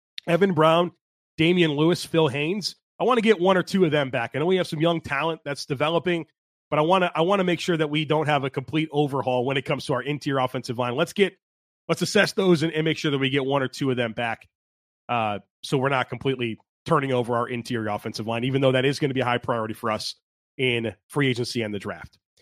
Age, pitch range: 30-49, 130-165 Hz